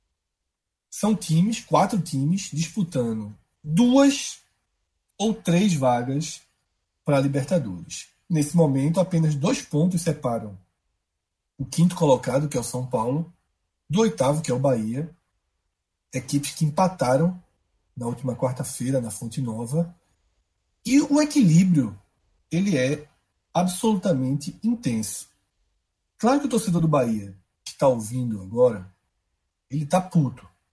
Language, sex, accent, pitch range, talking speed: Portuguese, male, Brazilian, 110-160 Hz, 115 wpm